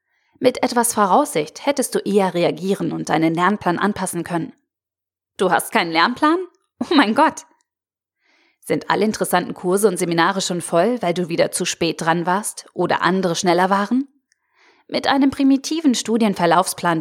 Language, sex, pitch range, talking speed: German, female, 170-245 Hz, 150 wpm